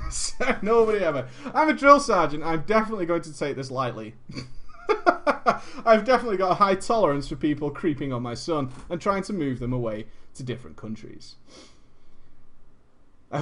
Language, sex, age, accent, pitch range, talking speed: English, male, 30-49, British, 135-220 Hz, 155 wpm